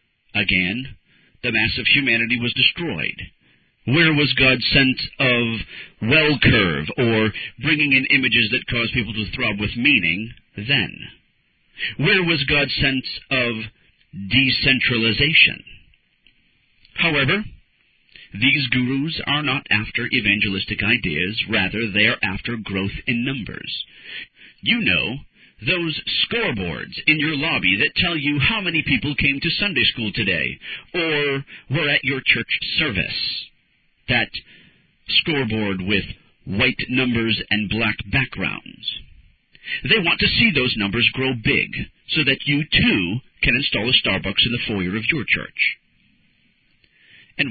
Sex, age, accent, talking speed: male, 50-69, American, 130 wpm